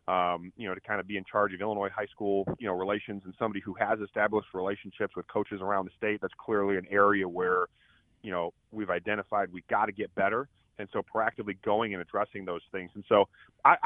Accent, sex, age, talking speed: American, male, 30-49, 225 wpm